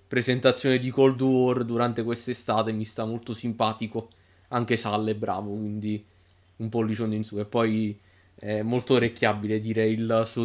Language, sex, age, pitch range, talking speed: Italian, male, 20-39, 110-130 Hz, 155 wpm